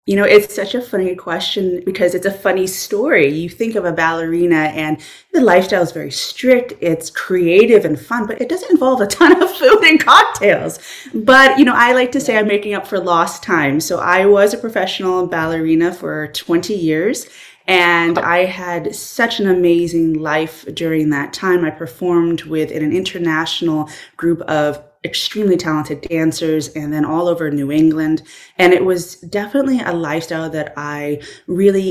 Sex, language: female, English